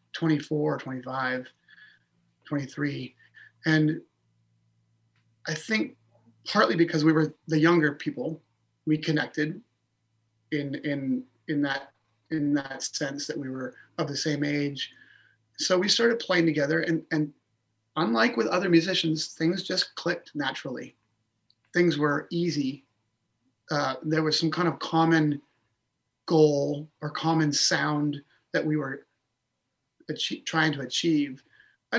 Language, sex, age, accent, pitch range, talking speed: English, male, 30-49, American, 130-160 Hz, 125 wpm